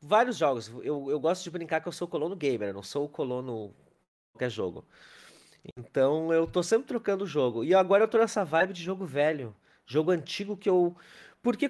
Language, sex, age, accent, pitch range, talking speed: Portuguese, male, 30-49, Brazilian, 145-215 Hz, 210 wpm